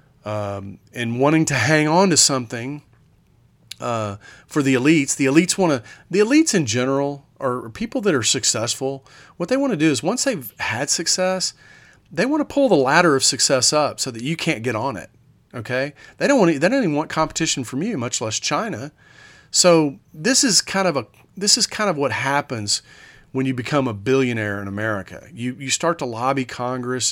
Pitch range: 115-160 Hz